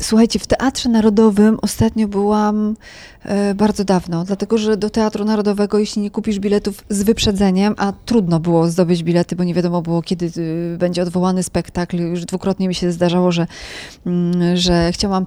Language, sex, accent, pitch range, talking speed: Polish, female, native, 175-215 Hz, 155 wpm